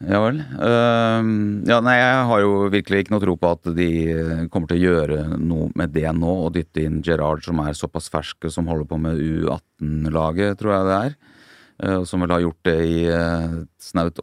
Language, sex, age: English, male, 30-49